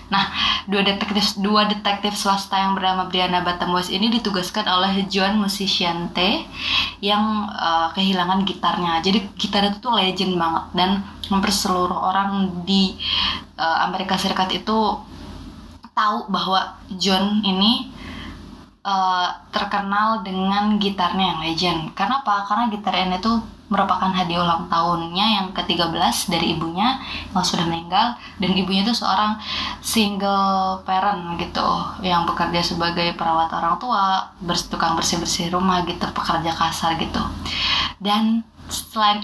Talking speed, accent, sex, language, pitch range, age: 125 wpm, native, female, Indonesian, 175-205 Hz, 20-39